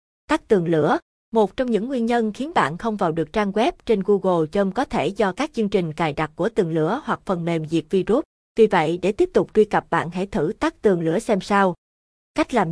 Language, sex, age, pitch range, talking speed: Vietnamese, female, 20-39, 180-225 Hz, 240 wpm